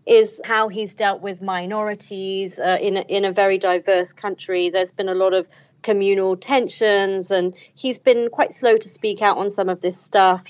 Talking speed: 195 wpm